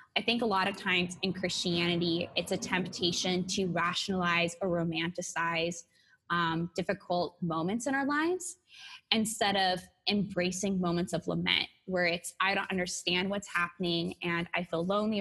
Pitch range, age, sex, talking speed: 175-205 Hz, 10-29, female, 150 wpm